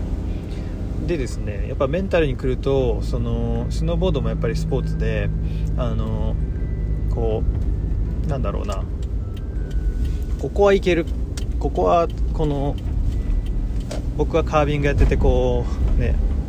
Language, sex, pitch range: Japanese, male, 75-110 Hz